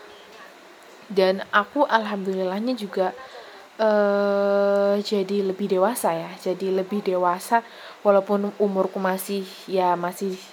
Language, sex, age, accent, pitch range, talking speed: English, female, 20-39, Indonesian, 195-230 Hz, 105 wpm